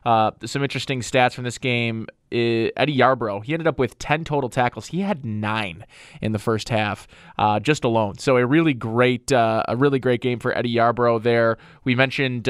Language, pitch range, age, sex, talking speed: English, 115-140 Hz, 20-39, male, 195 wpm